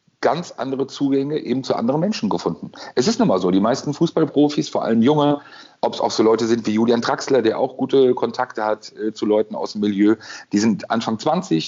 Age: 40-59